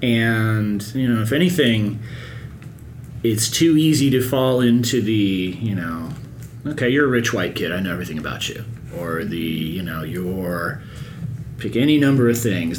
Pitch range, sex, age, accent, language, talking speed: 110-135 Hz, male, 30-49, American, English, 165 wpm